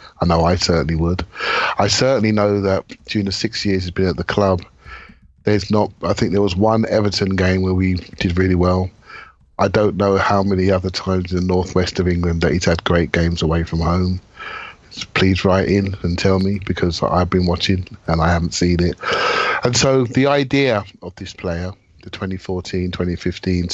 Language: English